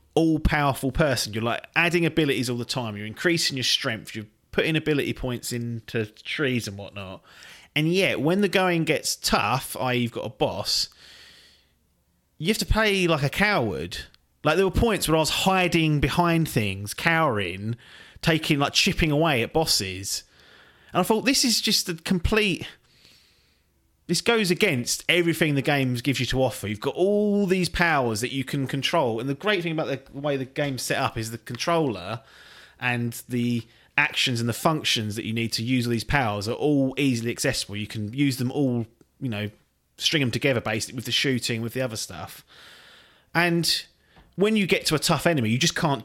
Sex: male